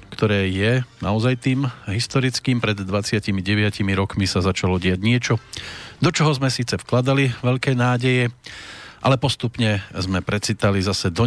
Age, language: 40-59, Slovak